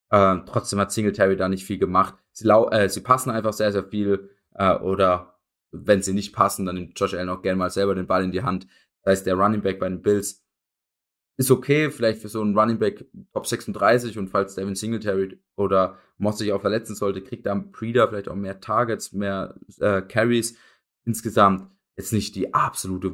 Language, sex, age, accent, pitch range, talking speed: German, male, 20-39, German, 95-120 Hz, 200 wpm